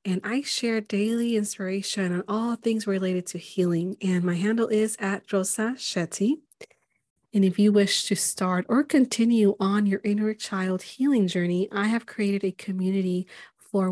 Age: 30-49